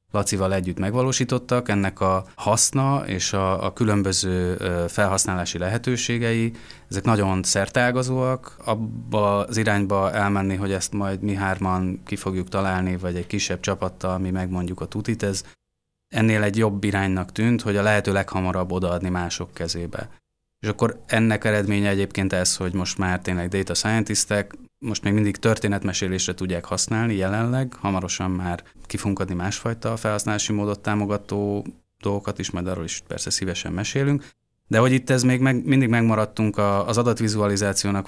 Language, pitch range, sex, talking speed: Hungarian, 95-110 Hz, male, 145 wpm